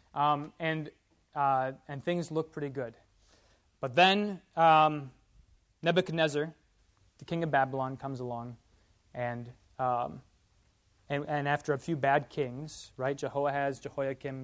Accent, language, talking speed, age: American, English, 125 wpm, 20-39